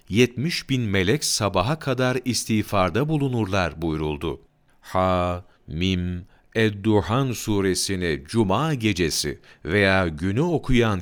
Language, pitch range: Turkish, 85-120 Hz